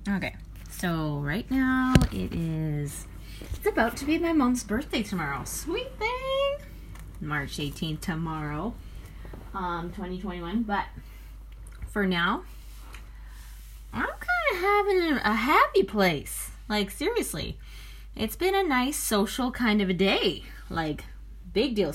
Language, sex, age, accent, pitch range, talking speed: English, female, 20-39, American, 140-210 Hz, 125 wpm